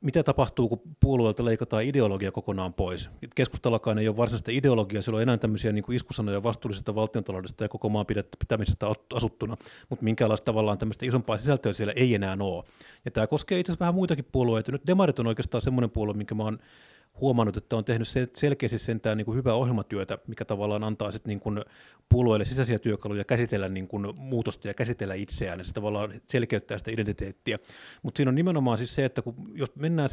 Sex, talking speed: male, 180 wpm